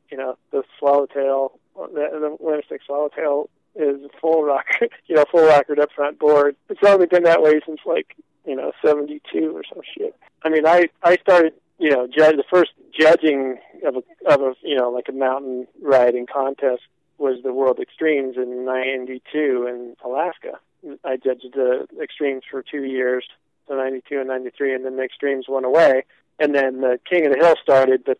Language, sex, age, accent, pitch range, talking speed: English, male, 40-59, American, 125-150 Hz, 190 wpm